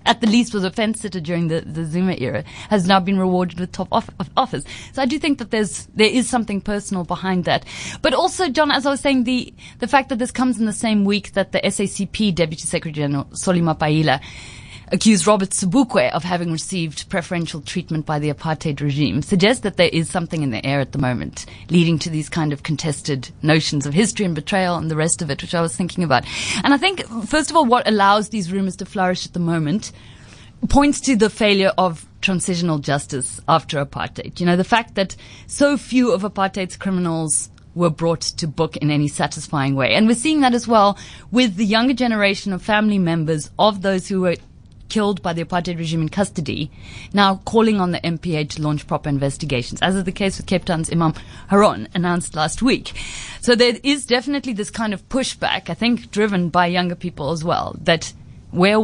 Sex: female